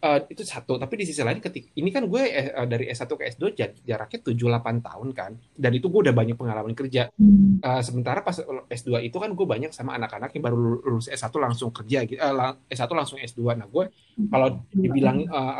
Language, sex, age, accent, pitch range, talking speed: Indonesian, male, 30-49, native, 120-165 Hz, 210 wpm